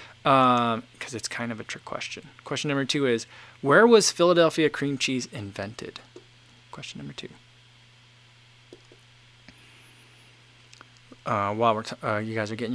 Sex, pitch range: male, 120-140 Hz